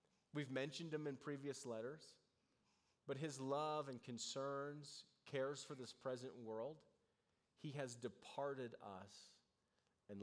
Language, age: English, 30-49